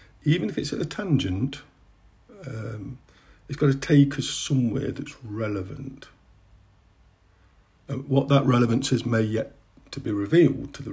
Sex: male